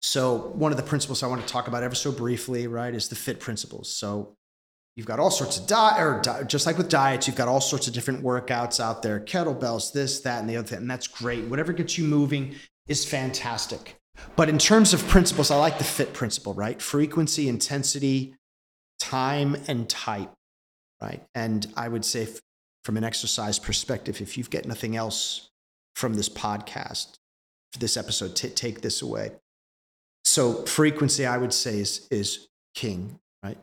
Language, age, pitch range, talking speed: English, 30-49, 105-135 Hz, 180 wpm